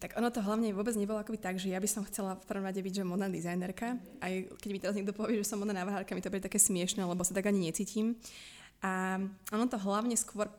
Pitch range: 185-205 Hz